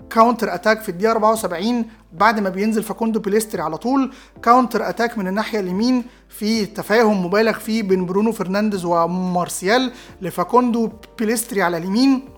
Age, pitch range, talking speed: 30-49, 190-230 Hz, 140 wpm